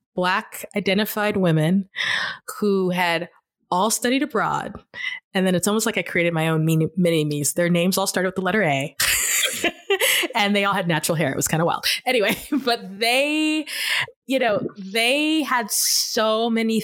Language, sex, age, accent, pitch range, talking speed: English, female, 20-39, American, 160-205 Hz, 170 wpm